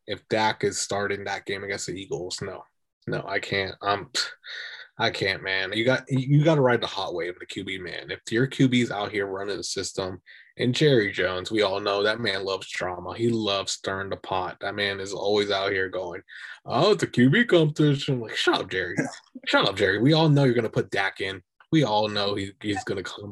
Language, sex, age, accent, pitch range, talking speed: English, male, 20-39, American, 100-130 Hz, 225 wpm